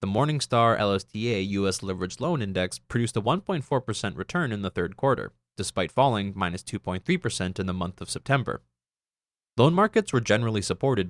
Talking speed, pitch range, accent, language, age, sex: 155 wpm, 90-125 Hz, American, English, 20-39, male